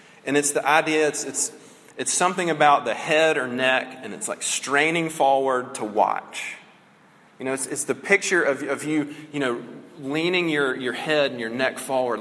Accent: American